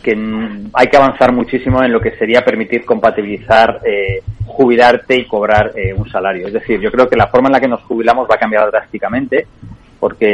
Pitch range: 110-130 Hz